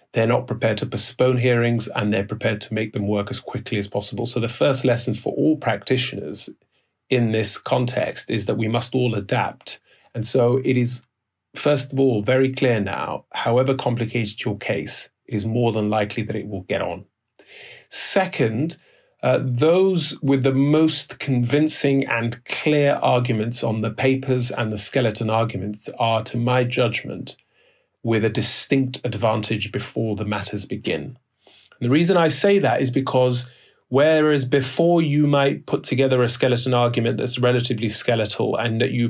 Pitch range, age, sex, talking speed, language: 110-130 Hz, 30-49, male, 165 wpm, English